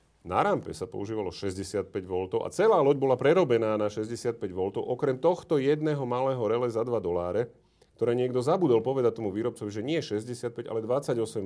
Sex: male